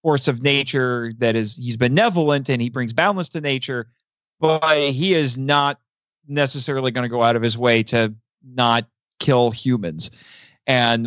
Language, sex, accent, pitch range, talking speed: English, male, American, 120-150 Hz, 165 wpm